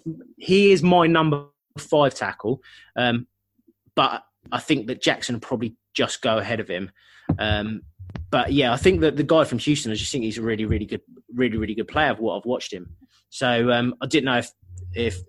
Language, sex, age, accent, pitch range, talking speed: English, male, 20-39, British, 110-150 Hz, 210 wpm